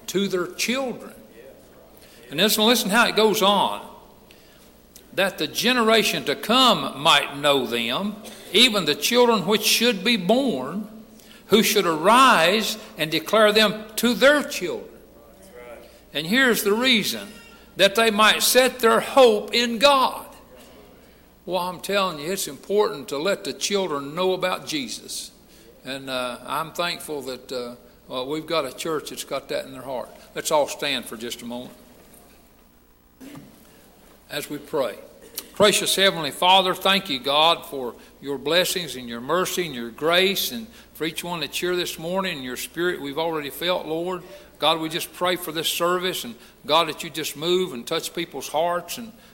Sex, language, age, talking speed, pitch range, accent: male, English, 60-79, 165 wpm, 150-215 Hz, American